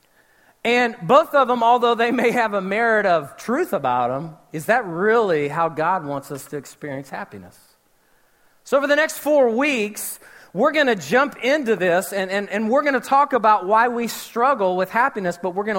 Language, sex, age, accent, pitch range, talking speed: English, male, 40-59, American, 190-245 Hz, 200 wpm